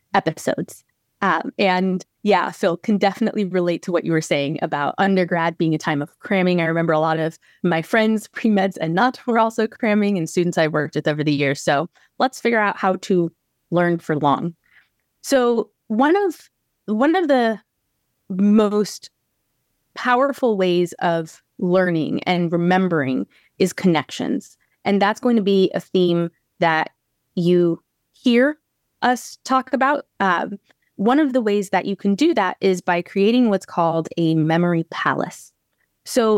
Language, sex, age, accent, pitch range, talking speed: English, female, 20-39, American, 170-225 Hz, 160 wpm